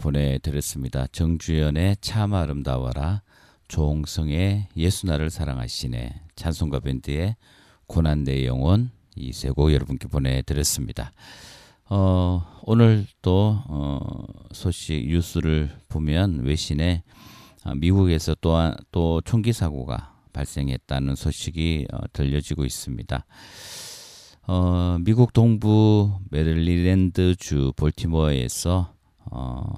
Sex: male